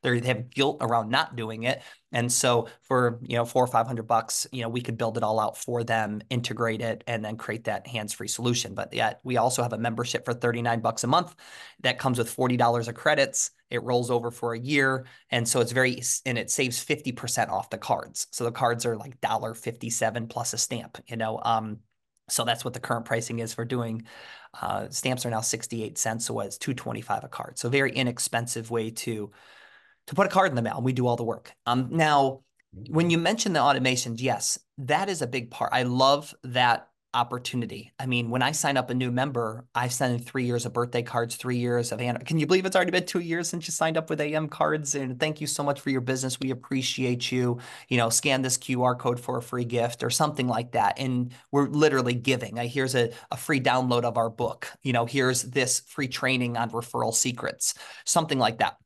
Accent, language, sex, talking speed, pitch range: American, English, male, 225 wpm, 115-130 Hz